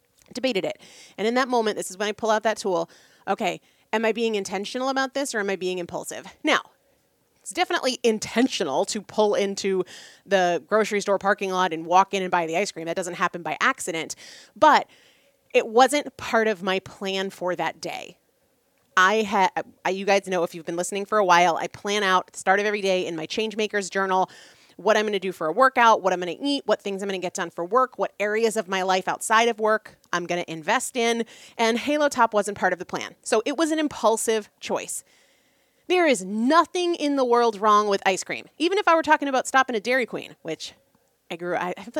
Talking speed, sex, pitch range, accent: 230 wpm, female, 180-230 Hz, American